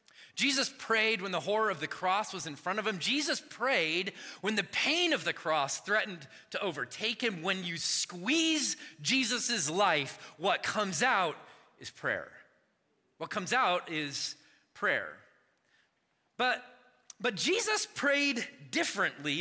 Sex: male